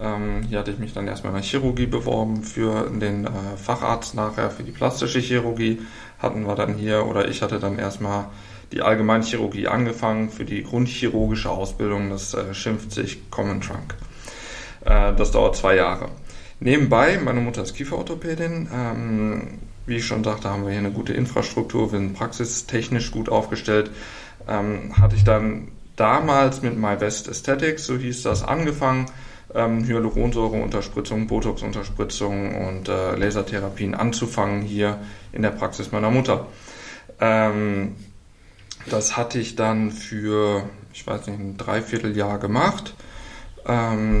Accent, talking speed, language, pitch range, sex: German, 145 wpm, German, 100-115 Hz, male